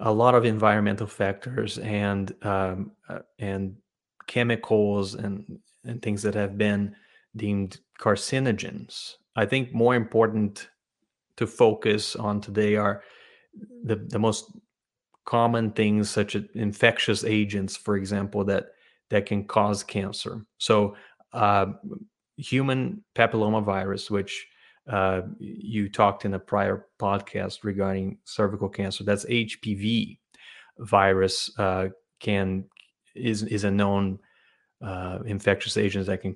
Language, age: English, 30-49